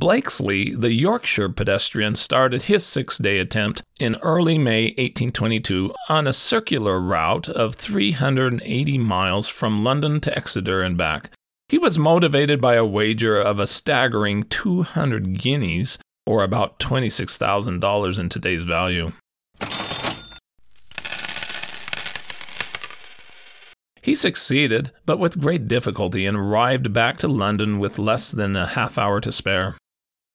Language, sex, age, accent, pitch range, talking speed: English, male, 40-59, American, 100-140 Hz, 125 wpm